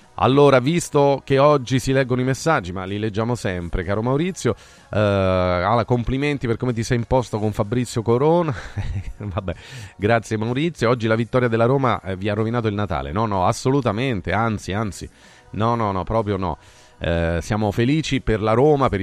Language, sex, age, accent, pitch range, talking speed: Italian, male, 30-49, native, 95-120 Hz, 170 wpm